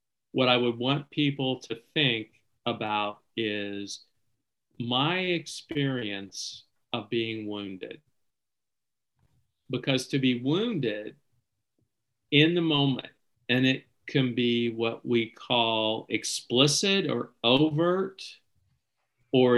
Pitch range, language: 115-140 Hz, English